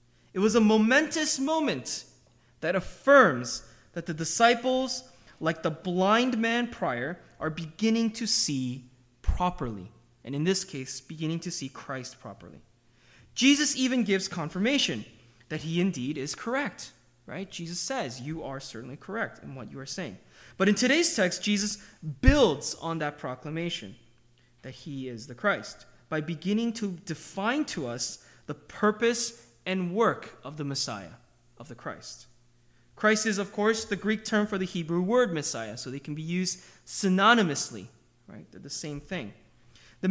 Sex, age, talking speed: male, 20-39, 155 wpm